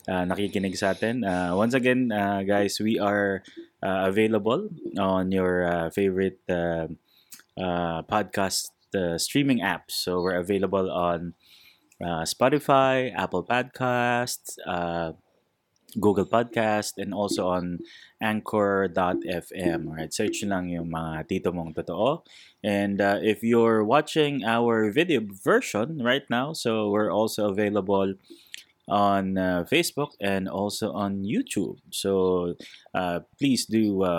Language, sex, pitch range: Filipino, male, 90-110 Hz